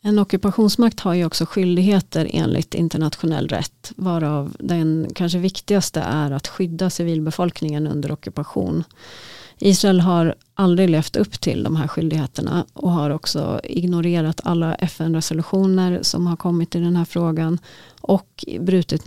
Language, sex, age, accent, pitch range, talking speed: Swedish, female, 30-49, native, 155-175 Hz, 135 wpm